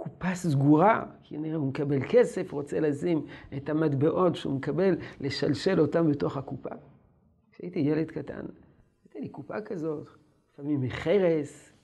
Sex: male